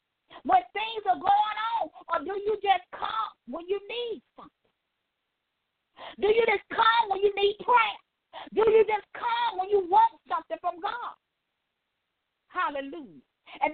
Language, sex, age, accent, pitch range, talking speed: English, female, 40-59, American, 255-400 Hz, 150 wpm